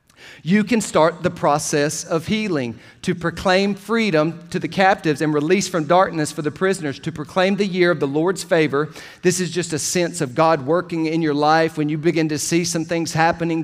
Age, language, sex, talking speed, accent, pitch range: 40-59, English, male, 205 wpm, American, 160-195 Hz